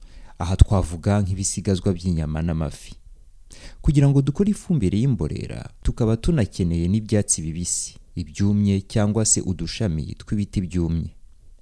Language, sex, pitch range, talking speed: English, male, 85-115 Hz, 110 wpm